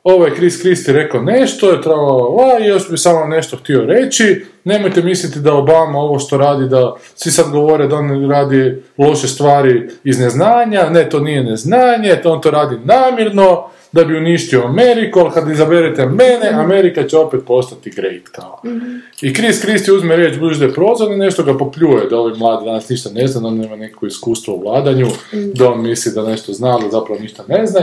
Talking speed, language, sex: 195 wpm, Croatian, male